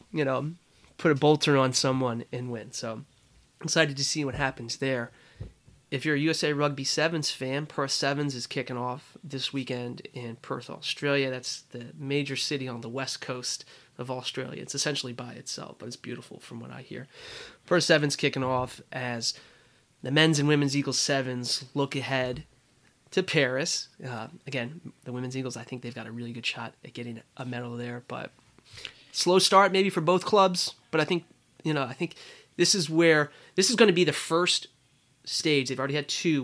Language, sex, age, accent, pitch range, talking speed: English, male, 20-39, American, 125-145 Hz, 190 wpm